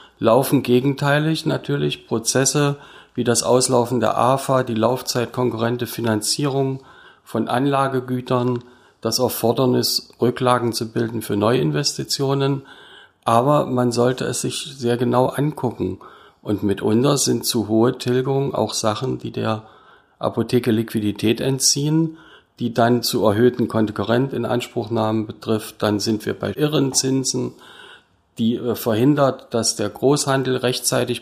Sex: male